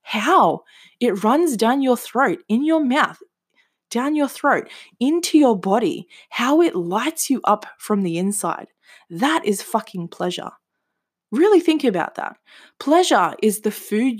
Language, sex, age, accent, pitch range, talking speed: English, female, 20-39, Australian, 175-220 Hz, 150 wpm